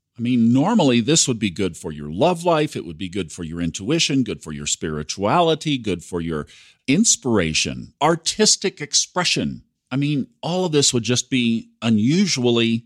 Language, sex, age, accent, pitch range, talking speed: English, male, 50-69, American, 100-135 Hz, 175 wpm